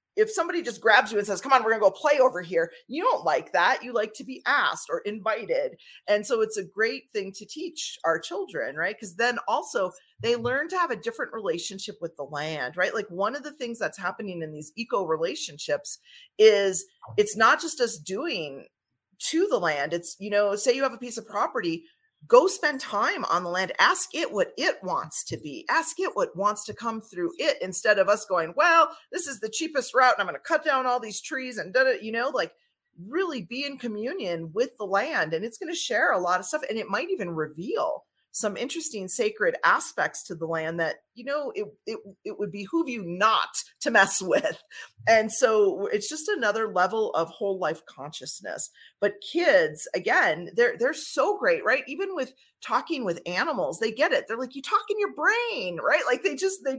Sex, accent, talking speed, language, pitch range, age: female, American, 215 wpm, English, 200-325 Hz, 30-49